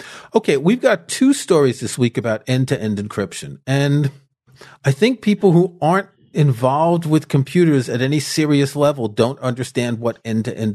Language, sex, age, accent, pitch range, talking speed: English, male, 40-59, American, 120-165 Hz, 175 wpm